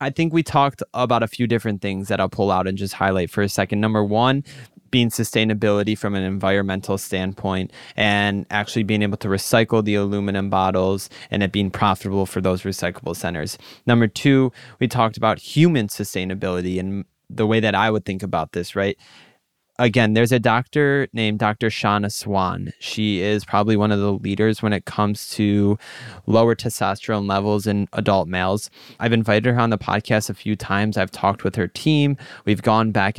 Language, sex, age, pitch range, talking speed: English, male, 20-39, 100-115 Hz, 190 wpm